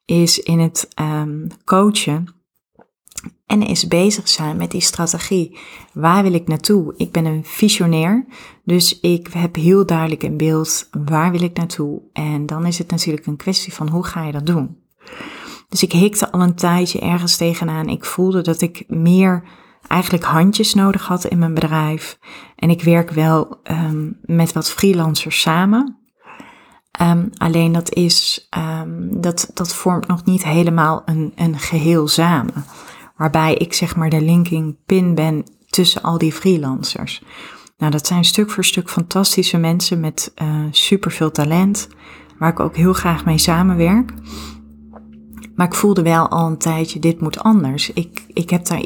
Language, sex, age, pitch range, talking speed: Dutch, female, 30-49, 160-185 Hz, 160 wpm